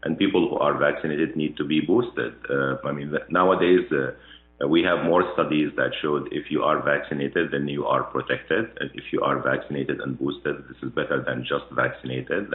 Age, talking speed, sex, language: 50-69, 195 wpm, male, Arabic